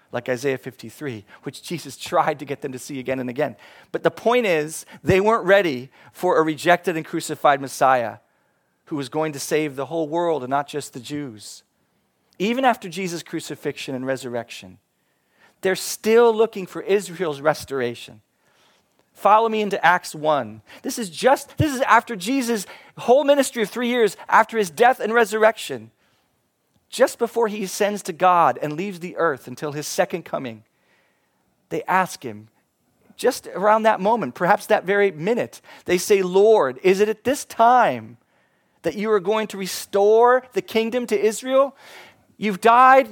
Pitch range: 155-235 Hz